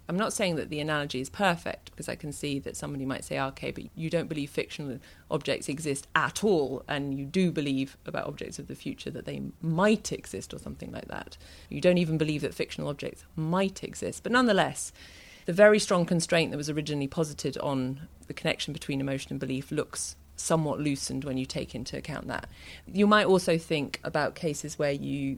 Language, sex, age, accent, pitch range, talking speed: English, female, 30-49, British, 135-175 Hz, 205 wpm